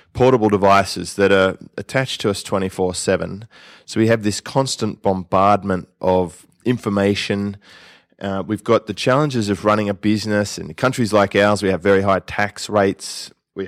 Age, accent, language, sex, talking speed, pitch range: 20-39, Australian, English, male, 160 wpm, 95-115 Hz